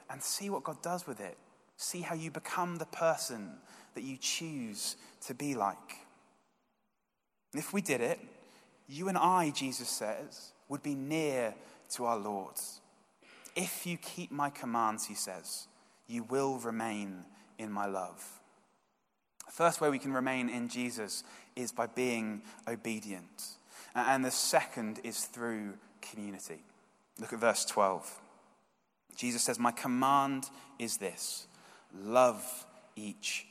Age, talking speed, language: 20-39, 140 wpm, English